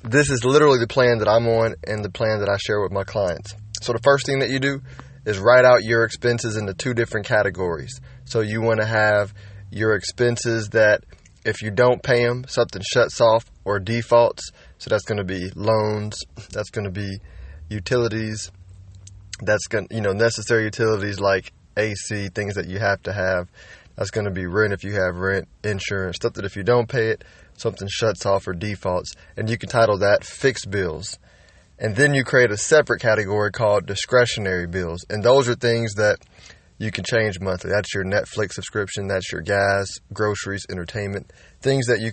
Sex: male